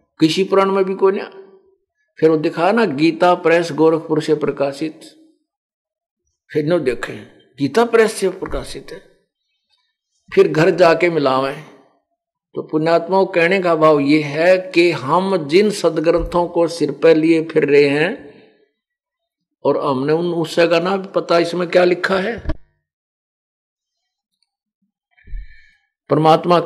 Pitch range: 155-215 Hz